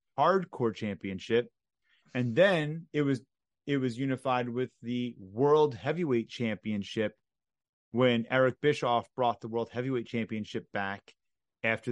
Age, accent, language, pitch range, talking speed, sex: 30-49, American, English, 100-125 Hz, 120 wpm, male